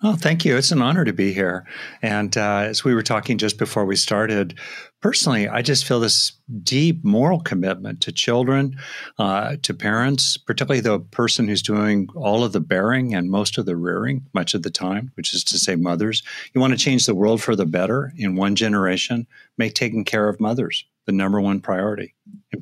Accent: American